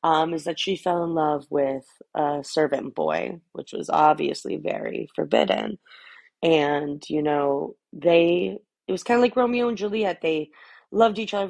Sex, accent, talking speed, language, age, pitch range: female, American, 165 wpm, English, 30-49, 165-220 Hz